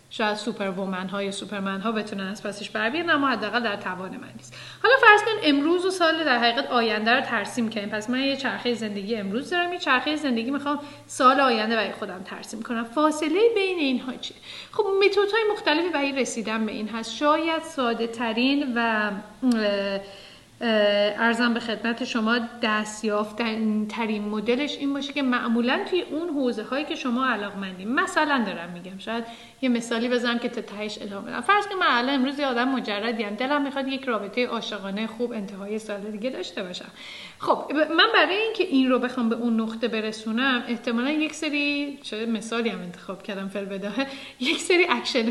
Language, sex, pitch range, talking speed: Persian, female, 210-275 Hz, 180 wpm